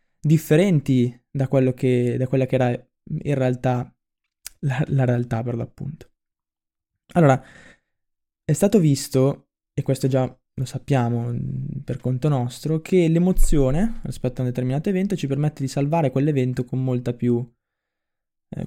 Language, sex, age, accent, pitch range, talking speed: Italian, male, 20-39, native, 125-145 Hz, 140 wpm